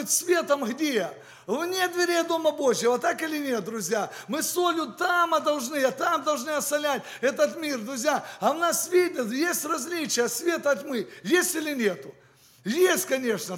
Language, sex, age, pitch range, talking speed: English, male, 50-69, 255-325 Hz, 155 wpm